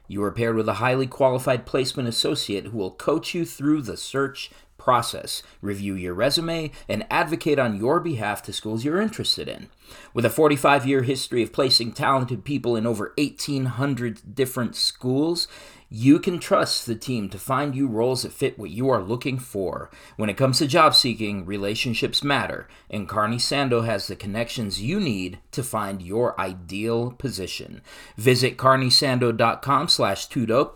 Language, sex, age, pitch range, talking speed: English, male, 40-59, 105-140 Hz, 160 wpm